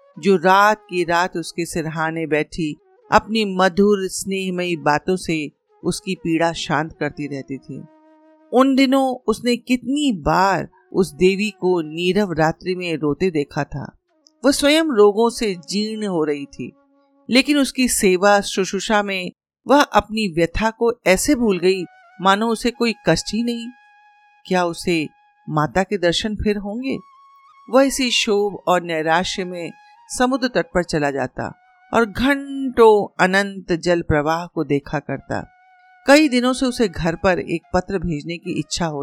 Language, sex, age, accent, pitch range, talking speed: Hindi, female, 50-69, native, 165-250 Hz, 150 wpm